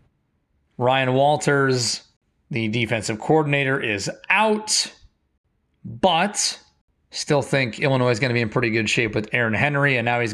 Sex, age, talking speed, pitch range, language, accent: male, 30-49, 145 wpm, 130-185 Hz, English, American